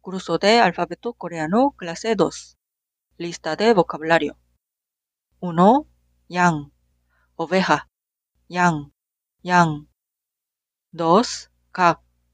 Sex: female